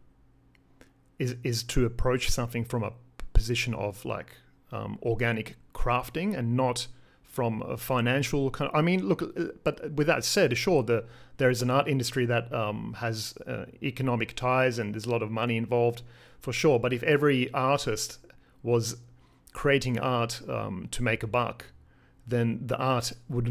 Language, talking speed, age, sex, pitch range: English, 160 wpm, 40-59, male, 115-130 Hz